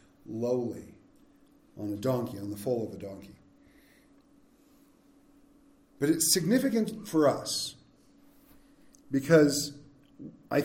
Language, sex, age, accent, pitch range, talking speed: English, male, 40-59, American, 150-235 Hz, 95 wpm